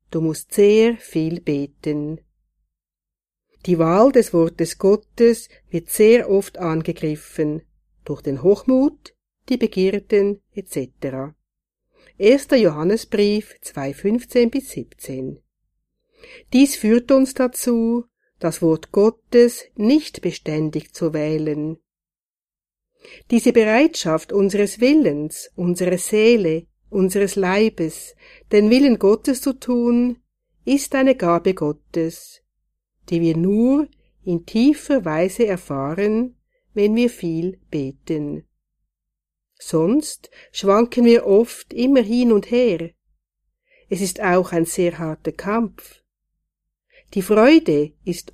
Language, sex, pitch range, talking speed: German, female, 165-245 Hz, 100 wpm